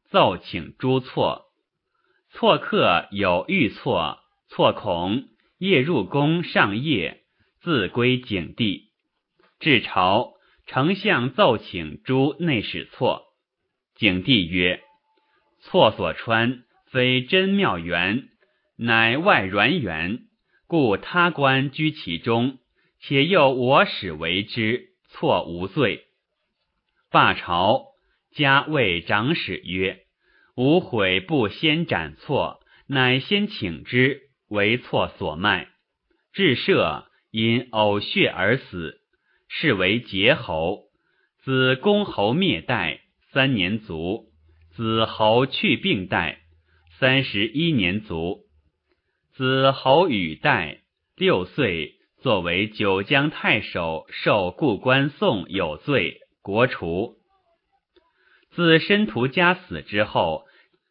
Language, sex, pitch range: English, male, 100-160 Hz